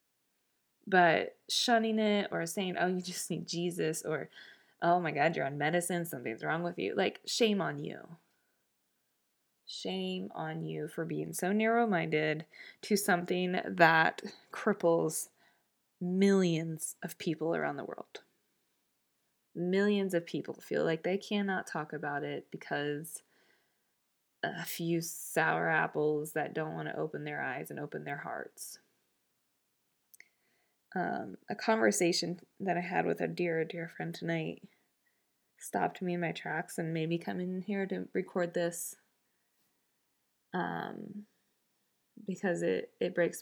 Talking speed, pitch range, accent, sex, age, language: 135 wpm, 165-190 Hz, American, female, 20-39, English